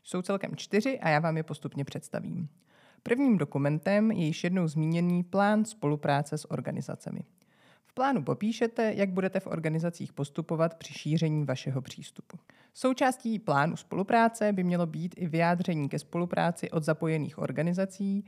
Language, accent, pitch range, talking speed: Czech, native, 150-200 Hz, 145 wpm